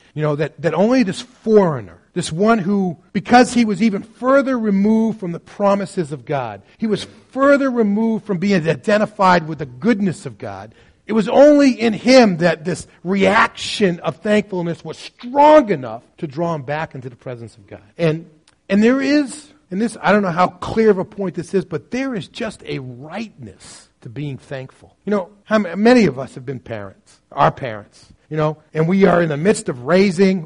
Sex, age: male, 40-59